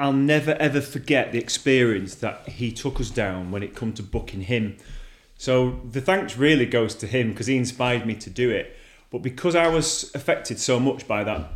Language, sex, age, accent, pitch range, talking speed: English, male, 30-49, British, 105-130 Hz, 210 wpm